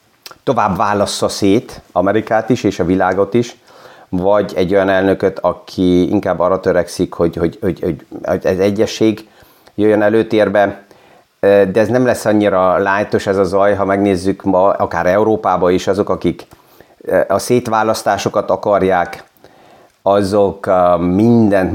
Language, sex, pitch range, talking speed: Hungarian, male, 90-105 Hz, 130 wpm